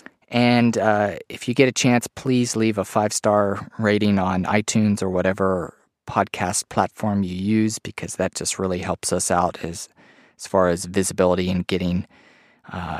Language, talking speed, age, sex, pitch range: English, 165 wpm, 30-49, male, 90-110 Hz